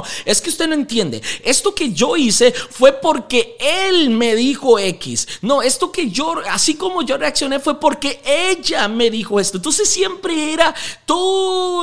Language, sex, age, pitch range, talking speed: Spanish, male, 30-49, 195-270 Hz, 165 wpm